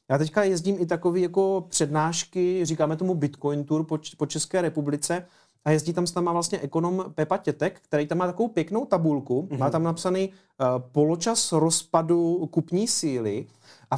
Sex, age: male, 40-59